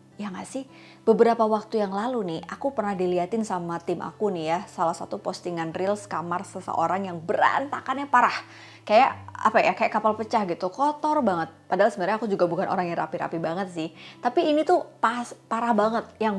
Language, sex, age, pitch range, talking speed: Indonesian, female, 20-39, 175-210 Hz, 185 wpm